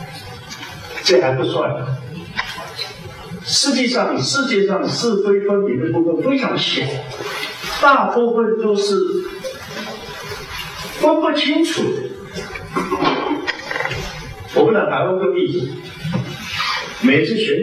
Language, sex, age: Chinese, male, 50-69